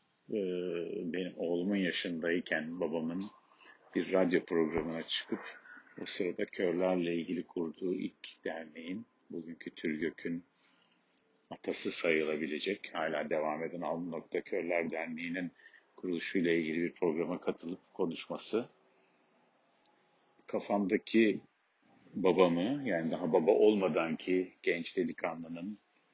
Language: Turkish